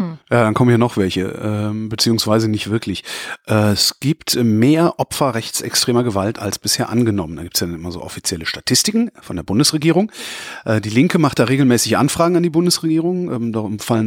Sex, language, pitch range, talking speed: male, German, 105-140 Hz, 190 wpm